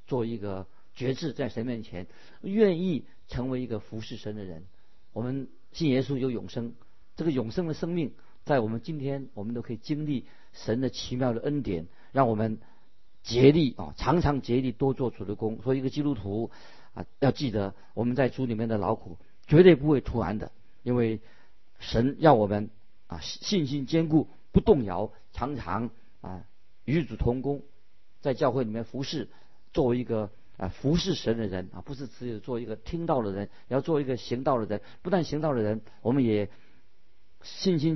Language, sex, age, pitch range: Chinese, male, 50-69, 105-140 Hz